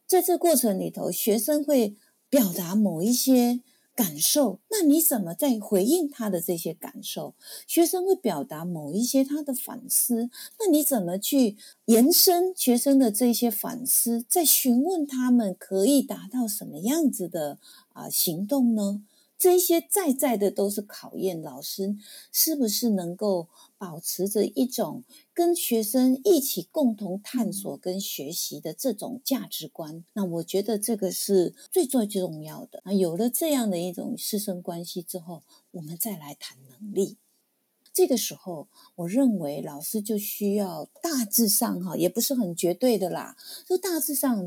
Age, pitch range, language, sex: 50-69, 195-275 Hz, Chinese, female